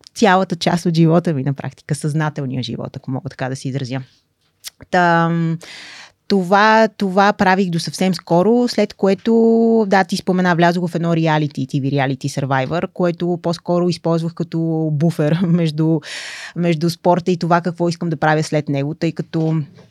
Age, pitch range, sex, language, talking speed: 20-39, 150-180 Hz, female, Bulgarian, 155 wpm